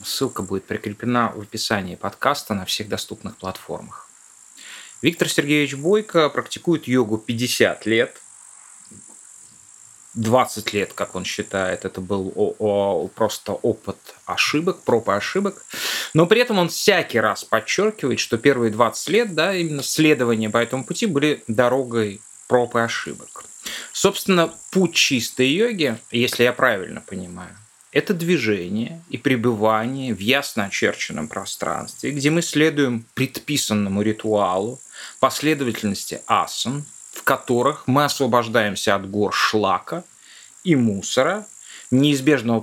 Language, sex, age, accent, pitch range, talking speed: Russian, male, 30-49, native, 110-170 Hz, 120 wpm